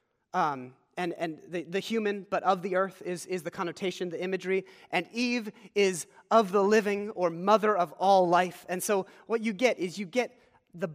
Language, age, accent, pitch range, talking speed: English, 30-49, American, 180-225 Hz, 195 wpm